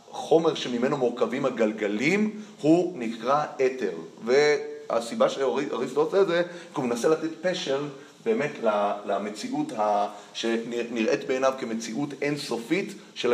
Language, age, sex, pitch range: Hebrew, 30-49, male, 115-175 Hz